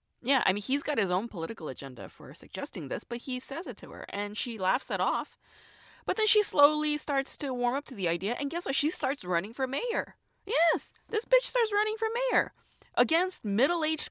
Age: 20-39